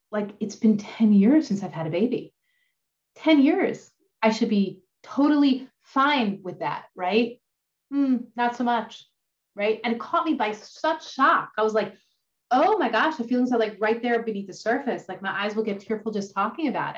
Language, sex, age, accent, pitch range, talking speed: English, female, 30-49, American, 190-240 Hz, 200 wpm